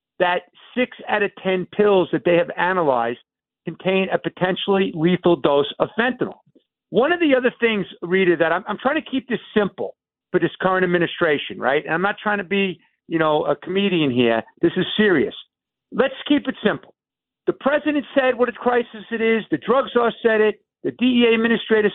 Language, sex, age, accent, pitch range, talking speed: English, male, 50-69, American, 175-220 Hz, 190 wpm